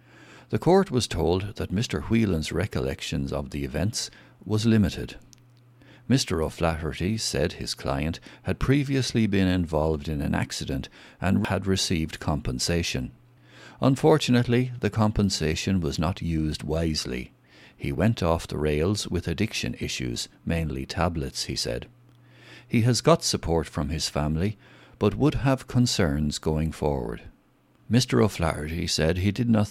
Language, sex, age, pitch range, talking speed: English, male, 60-79, 80-115 Hz, 135 wpm